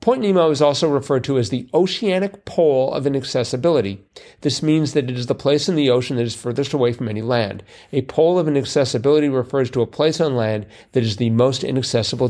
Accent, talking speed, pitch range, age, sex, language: American, 215 wpm, 120-150 Hz, 40-59, male, English